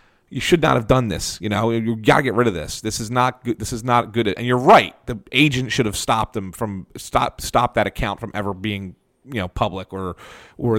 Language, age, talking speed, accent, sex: English, 40-59, 250 wpm, American, male